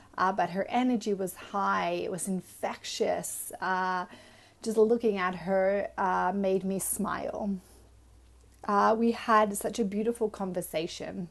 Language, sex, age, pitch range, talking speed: English, female, 30-49, 185-220 Hz, 135 wpm